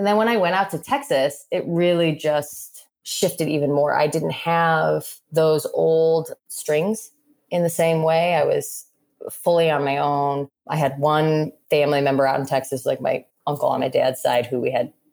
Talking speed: 190 wpm